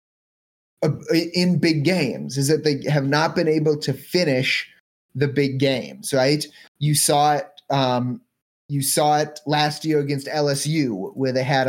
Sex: male